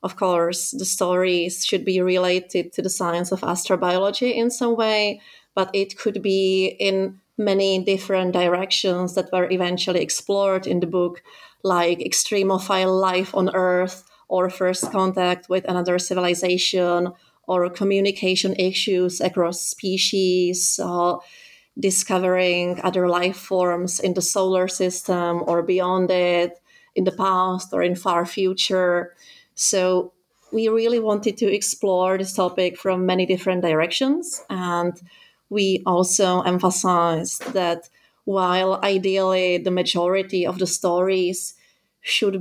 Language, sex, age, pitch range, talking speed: English, female, 30-49, 180-190 Hz, 125 wpm